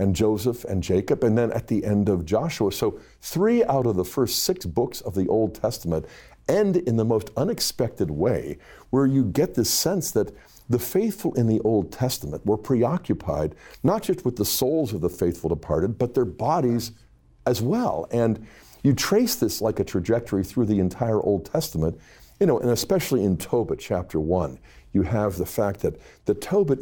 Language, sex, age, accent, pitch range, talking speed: English, male, 50-69, American, 95-120 Hz, 190 wpm